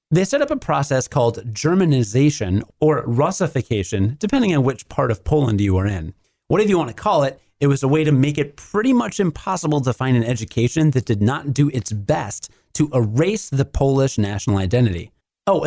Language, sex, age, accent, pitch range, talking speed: English, male, 30-49, American, 120-170 Hz, 195 wpm